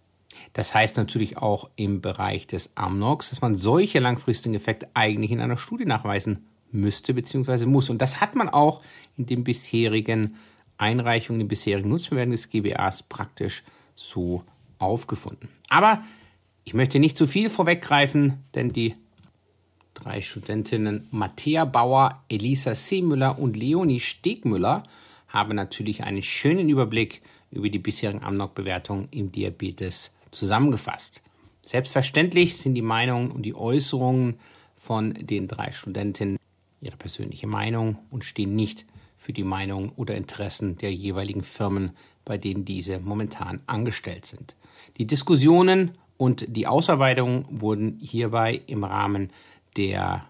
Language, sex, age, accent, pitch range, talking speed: English, male, 50-69, German, 100-130 Hz, 130 wpm